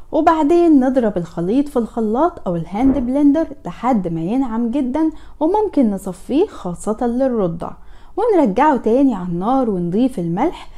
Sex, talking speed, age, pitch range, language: female, 120 wpm, 10-29, 190-285 Hz, Arabic